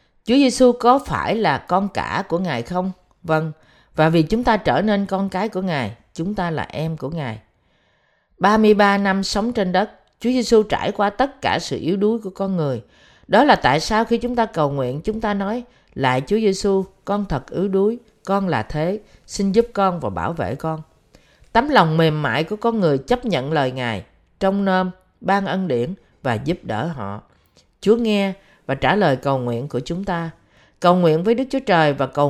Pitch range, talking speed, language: 150-205 Hz, 205 wpm, Vietnamese